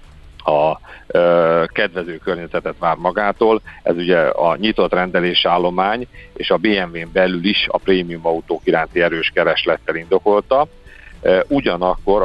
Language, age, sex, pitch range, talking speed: Hungarian, 50-69, male, 85-100 Hz, 120 wpm